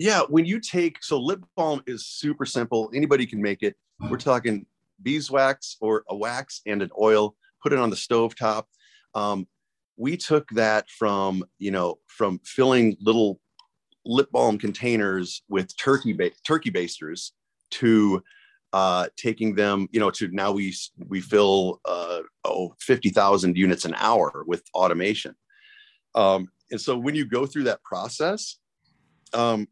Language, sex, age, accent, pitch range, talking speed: English, male, 40-59, American, 100-135 Hz, 150 wpm